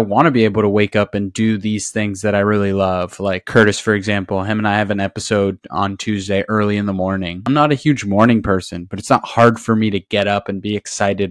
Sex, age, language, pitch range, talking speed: male, 20-39, English, 100-115 Hz, 260 wpm